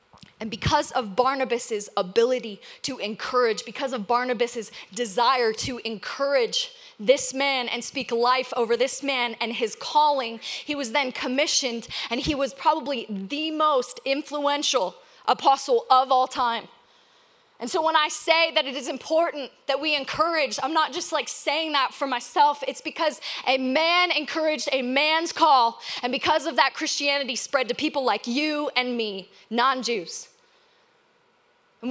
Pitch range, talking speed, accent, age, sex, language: 255-325 Hz, 150 wpm, American, 20-39, female, English